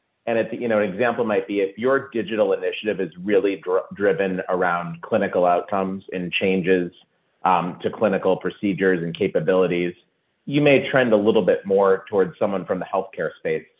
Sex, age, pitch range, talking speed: male, 30-49, 90-140 Hz, 175 wpm